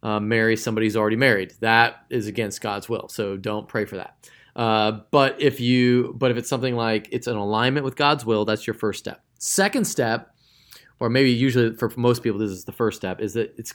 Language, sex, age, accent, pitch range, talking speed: English, male, 30-49, American, 115-150 Hz, 225 wpm